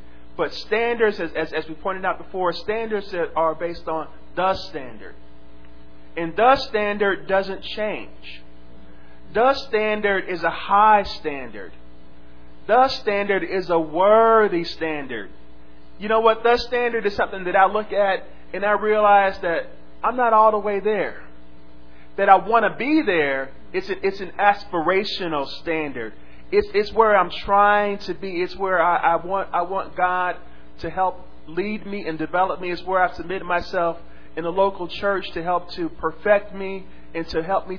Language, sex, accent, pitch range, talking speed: English, male, American, 150-200 Hz, 165 wpm